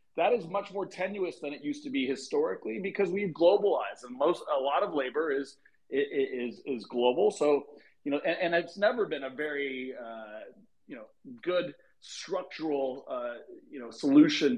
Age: 40-59